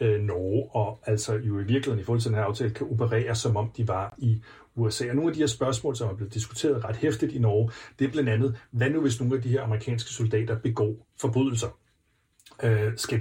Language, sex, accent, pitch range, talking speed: Danish, male, native, 110-130 Hz, 225 wpm